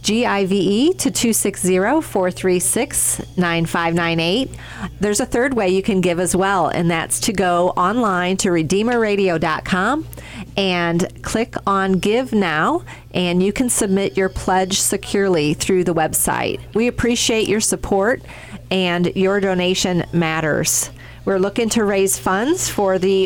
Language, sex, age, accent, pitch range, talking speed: English, female, 40-59, American, 175-210 Hz, 125 wpm